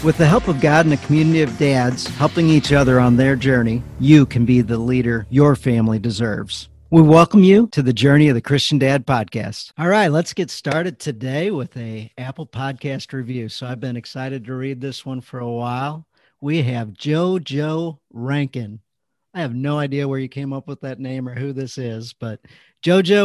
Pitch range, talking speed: 115-145 Hz, 200 wpm